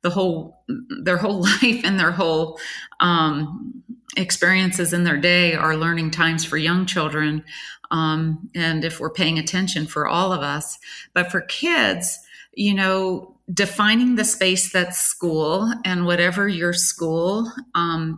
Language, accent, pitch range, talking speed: English, American, 160-190 Hz, 145 wpm